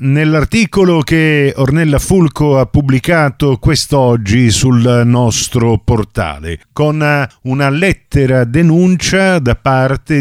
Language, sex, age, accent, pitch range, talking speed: Italian, male, 50-69, native, 115-150 Hz, 95 wpm